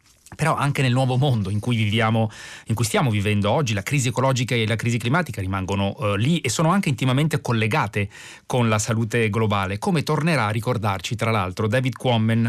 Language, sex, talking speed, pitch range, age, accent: Italian, male, 190 wpm, 105-125 Hz, 30-49, native